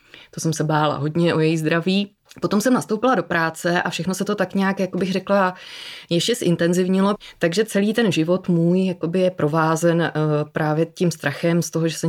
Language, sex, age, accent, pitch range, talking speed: Czech, female, 20-39, native, 155-185 Hz, 200 wpm